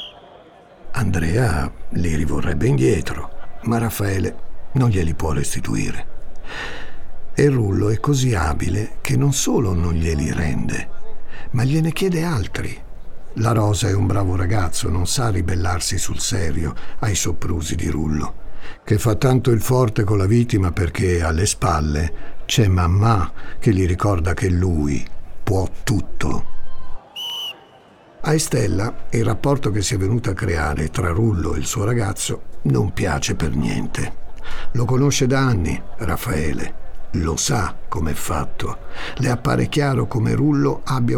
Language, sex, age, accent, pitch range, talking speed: Italian, male, 60-79, native, 85-125 Hz, 140 wpm